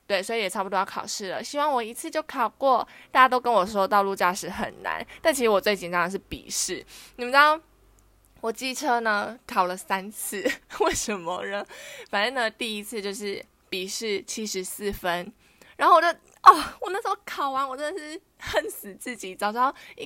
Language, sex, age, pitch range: Chinese, female, 20-39, 195-265 Hz